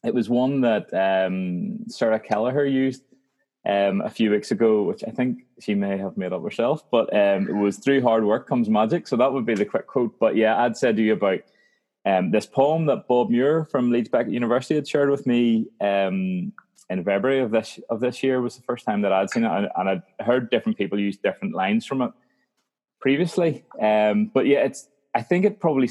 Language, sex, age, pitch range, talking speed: English, male, 20-39, 100-135 Hz, 220 wpm